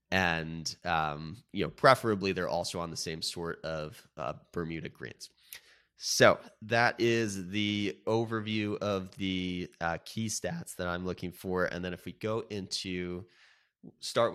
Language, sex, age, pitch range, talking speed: English, male, 20-39, 85-105 Hz, 150 wpm